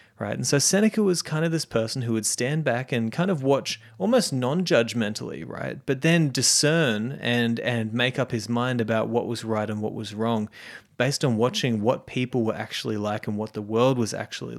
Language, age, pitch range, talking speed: English, 30-49, 110-140 Hz, 210 wpm